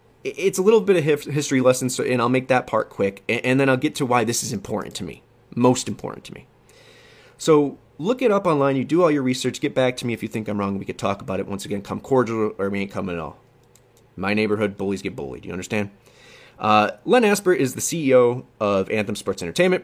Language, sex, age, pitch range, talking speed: English, male, 30-49, 105-145 Hz, 240 wpm